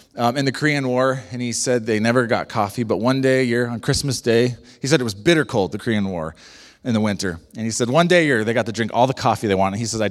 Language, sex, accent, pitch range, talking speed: English, male, American, 105-135 Hz, 305 wpm